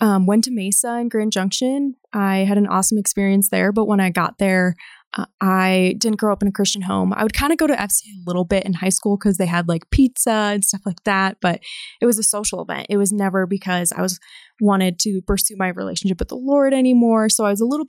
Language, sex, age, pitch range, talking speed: English, female, 20-39, 190-220 Hz, 250 wpm